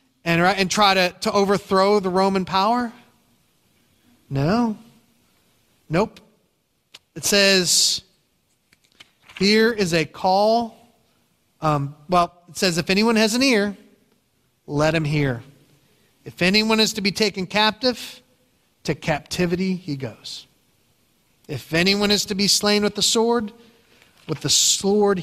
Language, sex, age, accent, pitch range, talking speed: English, male, 40-59, American, 145-200 Hz, 125 wpm